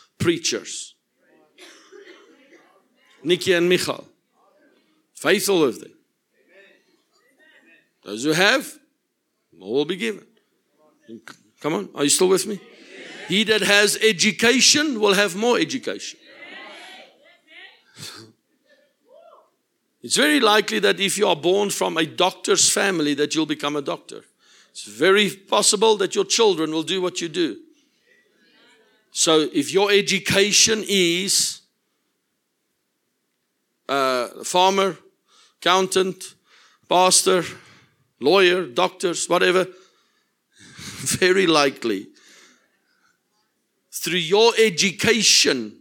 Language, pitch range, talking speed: English, 180-265 Hz, 95 wpm